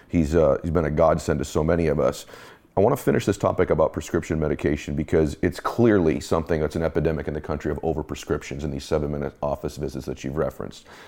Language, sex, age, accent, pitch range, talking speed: English, male, 40-59, American, 80-95 Hz, 225 wpm